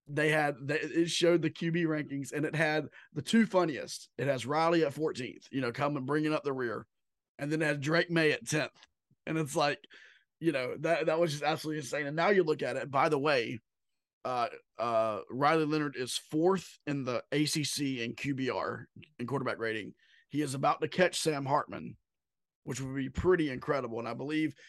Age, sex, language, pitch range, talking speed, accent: 30-49, male, English, 140-165 Hz, 200 wpm, American